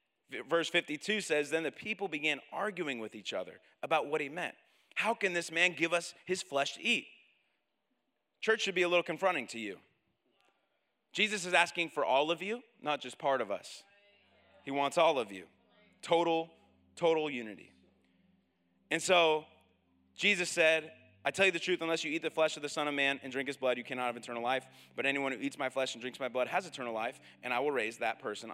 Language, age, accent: English, 30-49, American